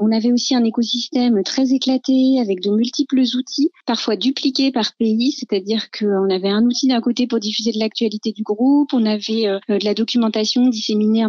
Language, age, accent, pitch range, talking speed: French, 30-49, French, 210-255 Hz, 180 wpm